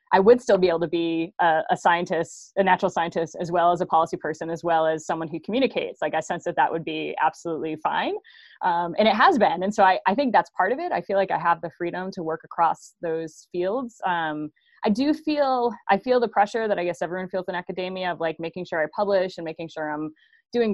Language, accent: English, American